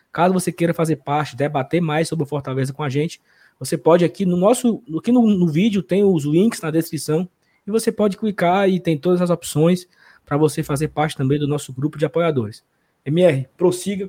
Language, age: Portuguese, 20-39